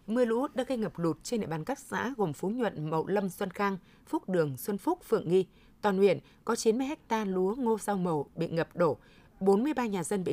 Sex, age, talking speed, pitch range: female, 20-39, 245 wpm, 180-230 Hz